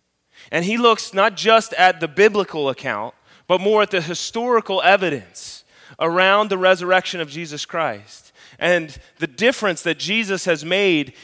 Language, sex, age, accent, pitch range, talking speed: English, male, 30-49, American, 125-175 Hz, 150 wpm